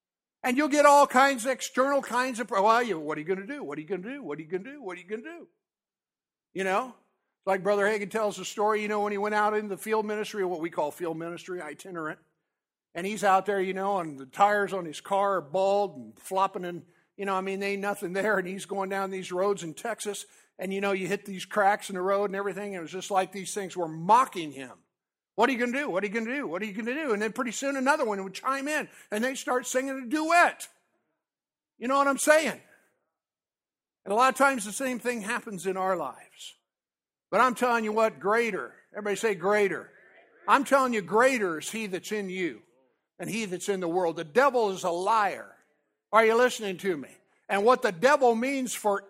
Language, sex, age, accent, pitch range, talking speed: English, male, 50-69, American, 190-250 Hz, 250 wpm